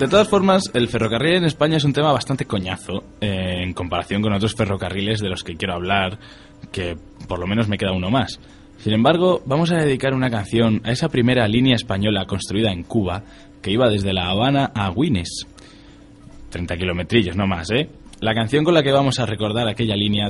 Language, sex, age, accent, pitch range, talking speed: Spanish, male, 20-39, Spanish, 90-115 Hz, 200 wpm